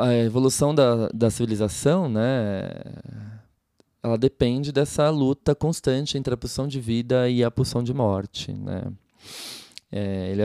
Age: 20-39